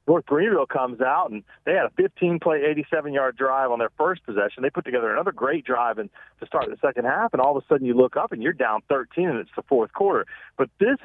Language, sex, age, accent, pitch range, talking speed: English, male, 40-59, American, 130-165 Hz, 245 wpm